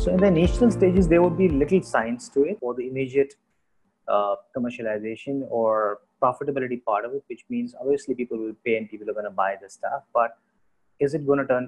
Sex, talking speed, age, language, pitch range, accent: male, 215 wpm, 30-49, English, 115-150 Hz, Indian